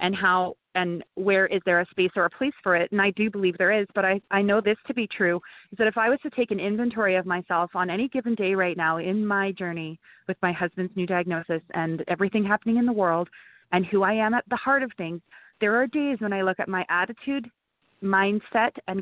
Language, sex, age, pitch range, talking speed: English, female, 30-49, 180-220 Hz, 245 wpm